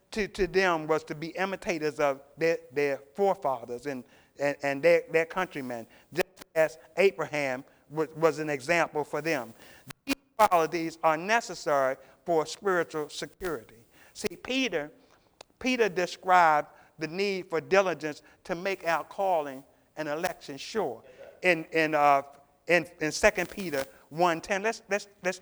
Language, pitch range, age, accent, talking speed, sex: English, 150-190 Hz, 50-69, American, 140 wpm, male